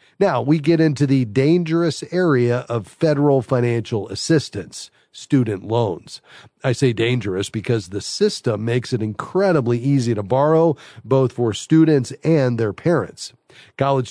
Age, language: 40-59, English